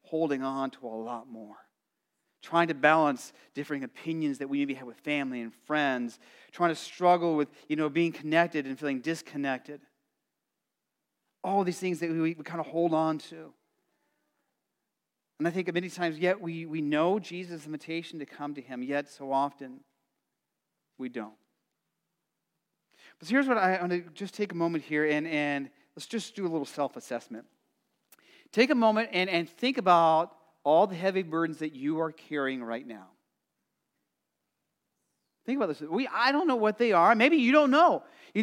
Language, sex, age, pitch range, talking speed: English, male, 30-49, 145-195 Hz, 175 wpm